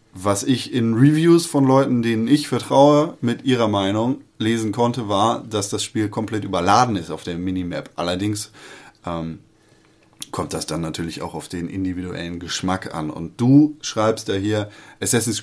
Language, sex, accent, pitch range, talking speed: German, male, German, 95-125 Hz, 165 wpm